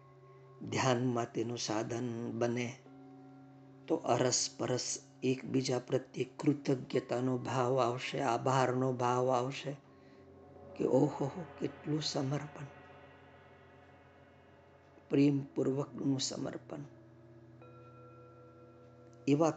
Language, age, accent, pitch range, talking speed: Gujarati, 50-69, native, 120-145 Hz, 70 wpm